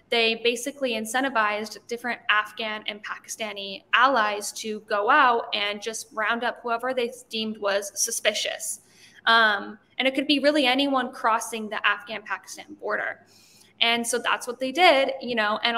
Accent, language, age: American, English, 10-29